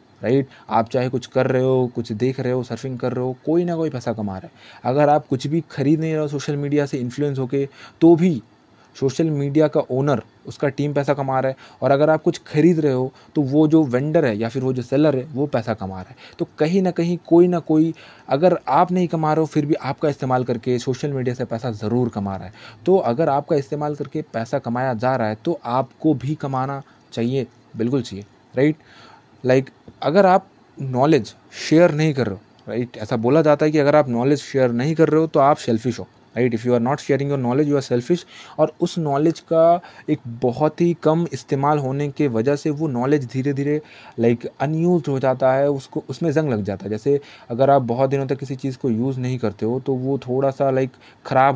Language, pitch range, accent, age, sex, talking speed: Hindi, 125-150 Hz, native, 20-39, male, 235 wpm